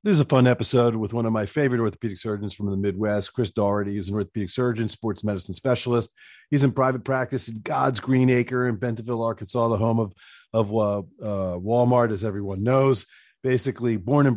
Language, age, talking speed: English, 40-59, 200 wpm